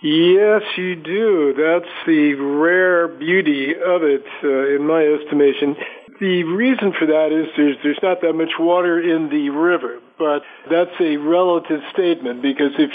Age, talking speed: 50-69, 160 wpm